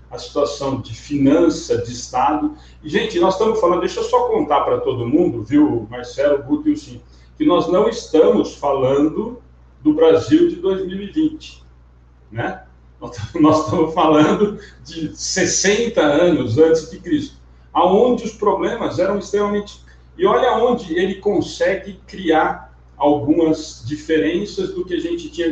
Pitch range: 150-210 Hz